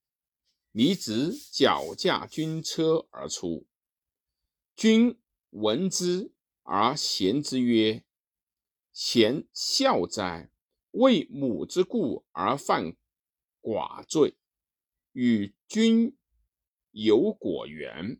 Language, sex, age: Chinese, male, 50-69